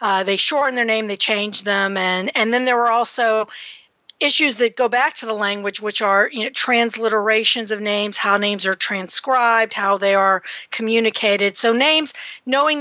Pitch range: 205-240 Hz